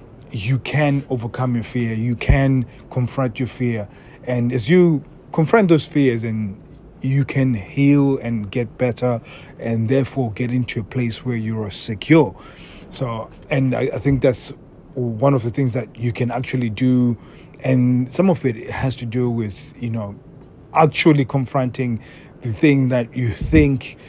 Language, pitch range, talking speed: English, 115-135 Hz, 160 wpm